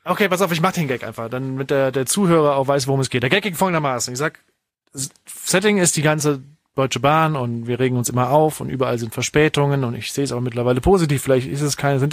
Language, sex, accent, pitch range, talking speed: German, male, German, 120-155 Hz, 255 wpm